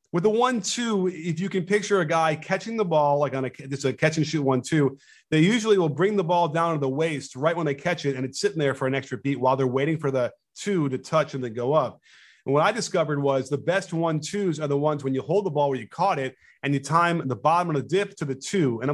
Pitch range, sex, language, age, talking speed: 135-175 Hz, male, English, 30-49, 270 wpm